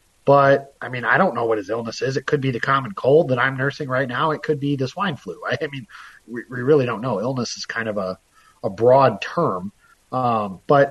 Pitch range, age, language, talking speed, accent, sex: 115-150 Hz, 30-49, English, 240 wpm, American, male